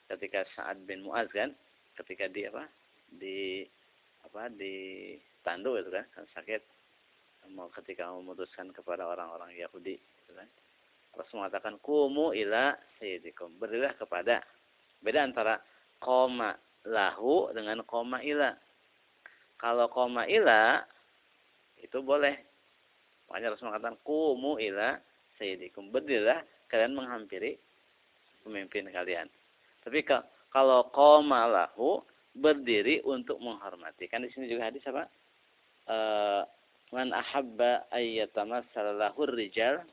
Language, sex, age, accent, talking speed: Indonesian, male, 40-59, native, 110 wpm